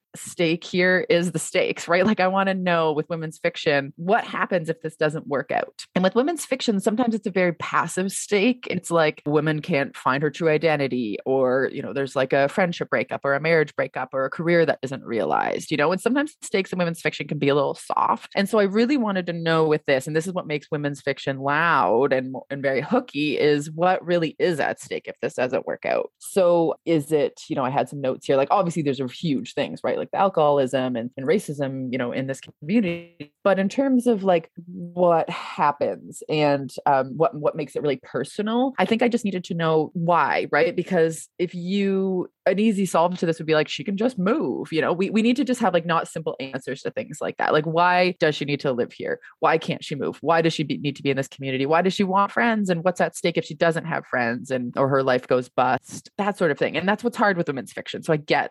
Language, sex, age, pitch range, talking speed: English, female, 20-39, 145-195 Hz, 250 wpm